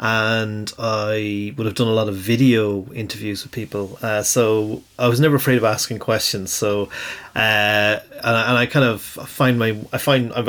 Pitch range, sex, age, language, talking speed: 105-125 Hz, male, 30-49, English, 200 wpm